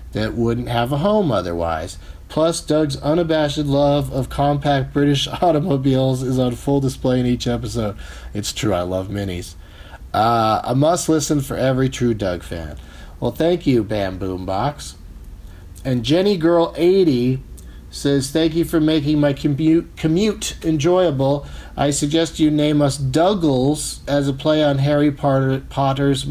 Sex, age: male, 40-59